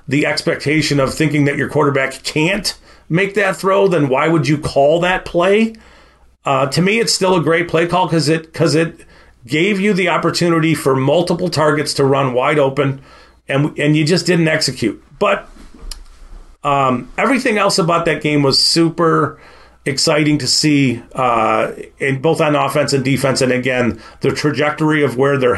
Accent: American